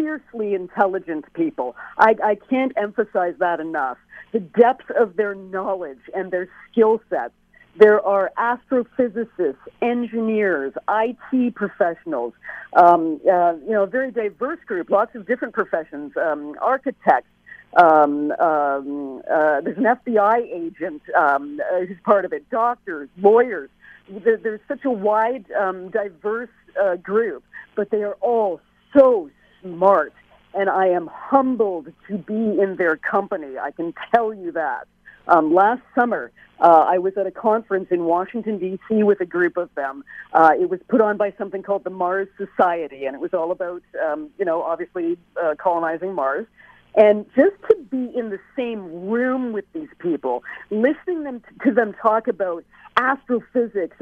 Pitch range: 180-245 Hz